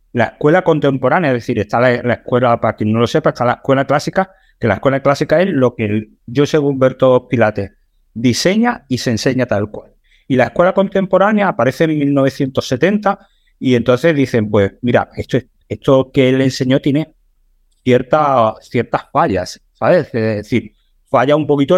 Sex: male